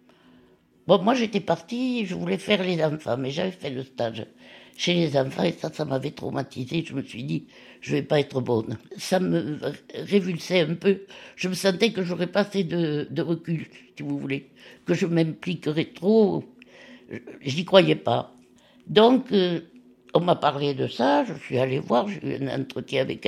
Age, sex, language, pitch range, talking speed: 60-79, female, French, 135-195 Hz, 185 wpm